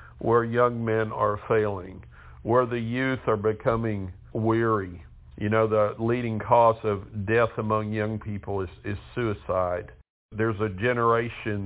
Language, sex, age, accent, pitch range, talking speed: English, male, 50-69, American, 100-120 Hz, 140 wpm